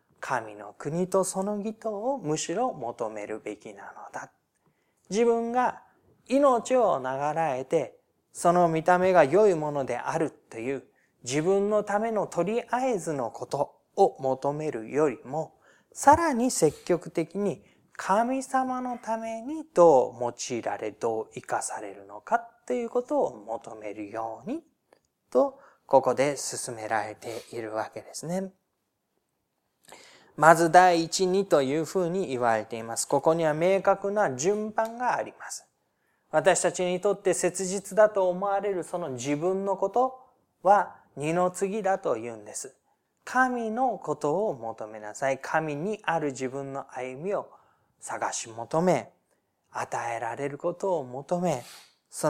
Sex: male